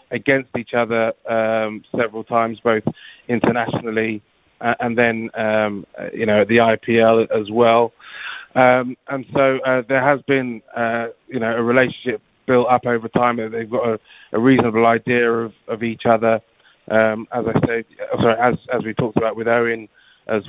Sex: male